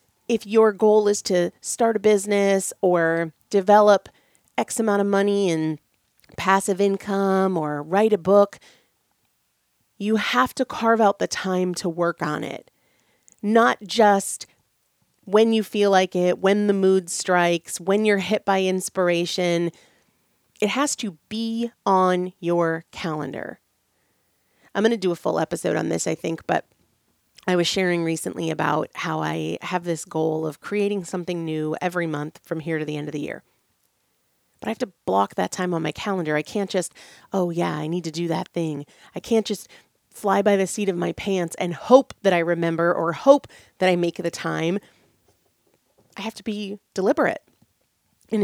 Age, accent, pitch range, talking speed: 30-49, American, 170-215 Hz, 175 wpm